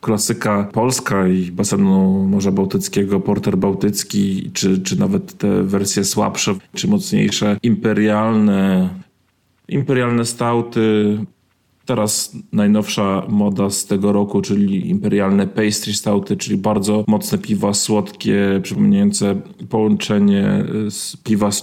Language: Polish